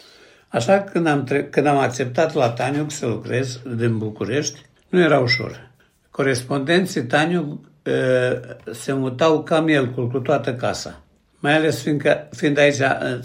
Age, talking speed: 60-79, 150 wpm